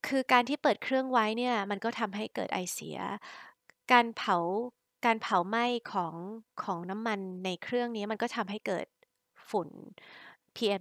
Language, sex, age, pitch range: Thai, female, 20-39, 195-240 Hz